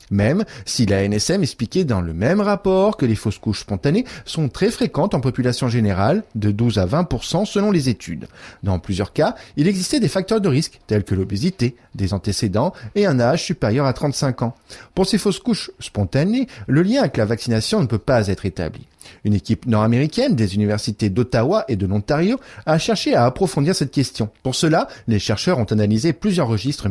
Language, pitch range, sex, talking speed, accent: French, 105-175 Hz, male, 190 wpm, French